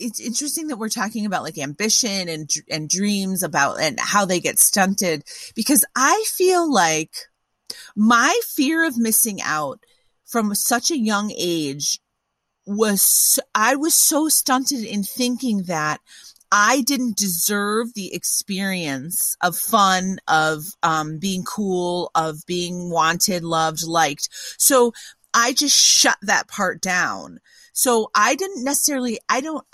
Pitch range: 175-250 Hz